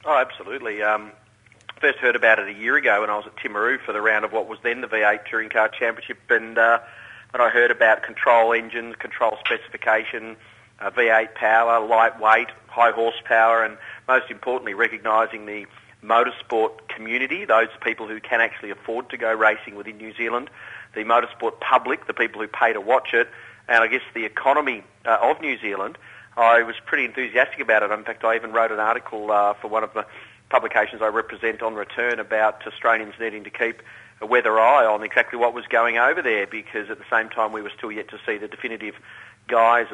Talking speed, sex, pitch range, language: 200 wpm, male, 110-115 Hz, English